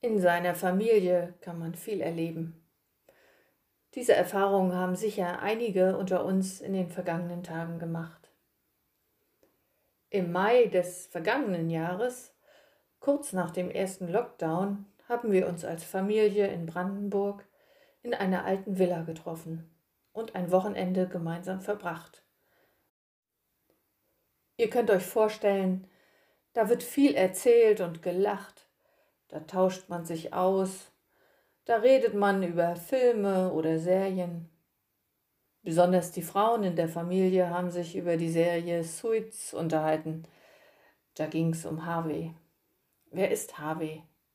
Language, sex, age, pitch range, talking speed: German, female, 50-69, 170-205 Hz, 120 wpm